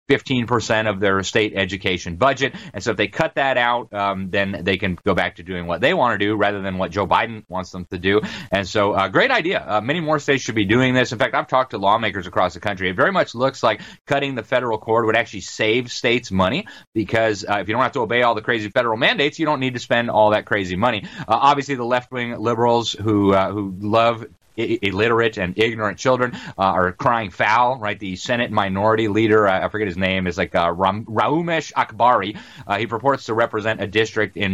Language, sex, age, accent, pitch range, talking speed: English, male, 30-49, American, 100-130 Hz, 235 wpm